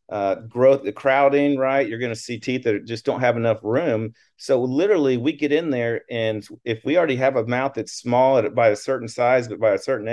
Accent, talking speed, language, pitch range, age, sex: American, 230 wpm, English, 110-140 Hz, 40-59, male